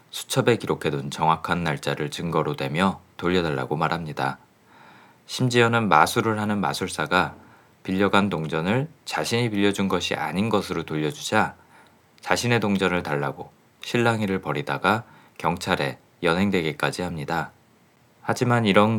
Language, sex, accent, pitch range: Korean, male, native, 80-110 Hz